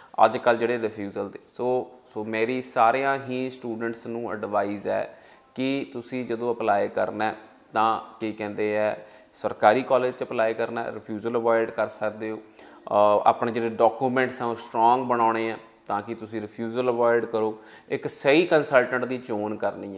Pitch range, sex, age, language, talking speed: 110-130 Hz, male, 30-49, Punjabi, 155 wpm